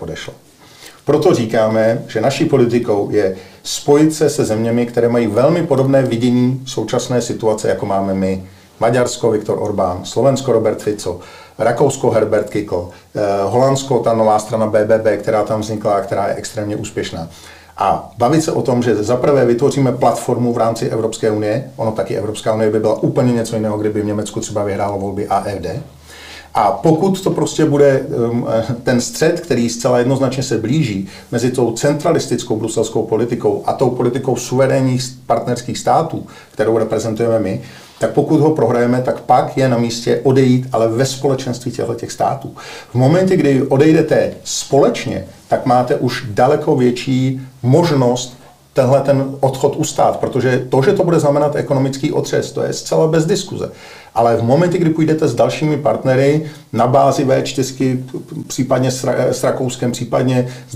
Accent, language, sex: native, Czech, male